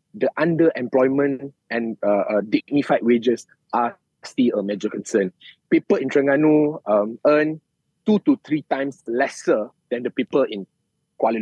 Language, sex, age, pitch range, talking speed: English, male, 20-39, 130-185 Hz, 140 wpm